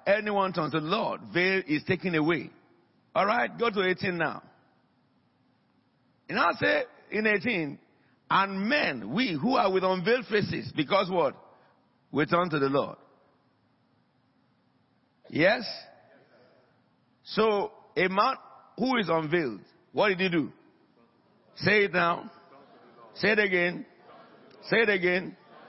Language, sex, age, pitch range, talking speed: English, male, 60-79, 155-210 Hz, 130 wpm